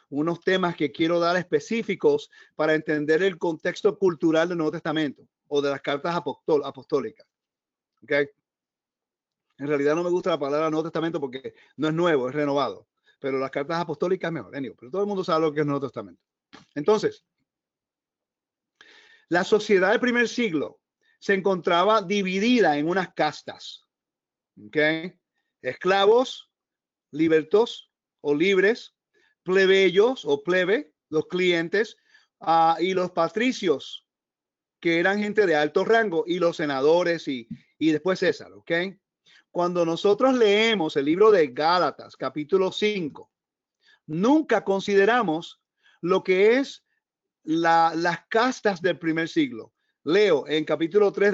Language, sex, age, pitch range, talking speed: Spanish, male, 40-59, 160-220 Hz, 135 wpm